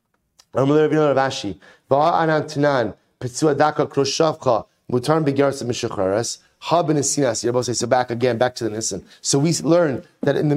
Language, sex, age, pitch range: English, male, 30-49, 120-150 Hz